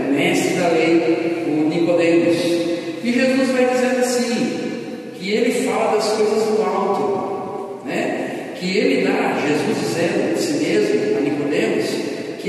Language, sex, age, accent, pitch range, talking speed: Portuguese, male, 50-69, Brazilian, 180-265 Hz, 140 wpm